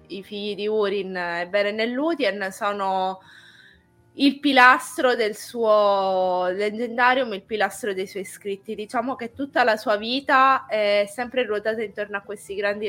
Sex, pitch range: female, 190-225 Hz